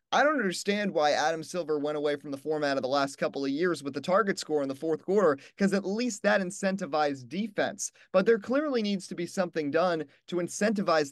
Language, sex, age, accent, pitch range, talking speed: English, male, 30-49, American, 145-190 Hz, 220 wpm